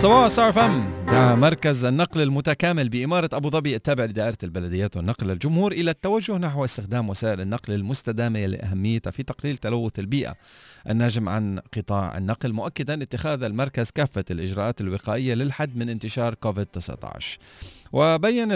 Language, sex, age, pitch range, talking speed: Arabic, male, 40-59, 100-135 Hz, 130 wpm